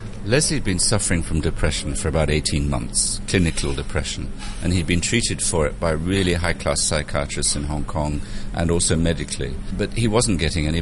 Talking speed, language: 185 wpm, English